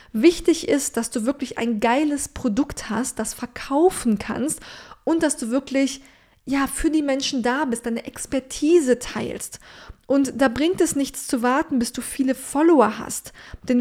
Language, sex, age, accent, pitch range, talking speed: German, female, 20-39, German, 240-285 Hz, 160 wpm